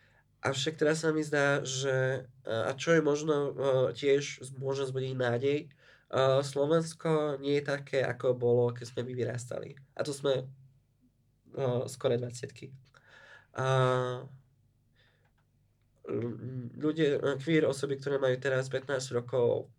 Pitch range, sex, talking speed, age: 125-135 Hz, male, 115 wpm, 20-39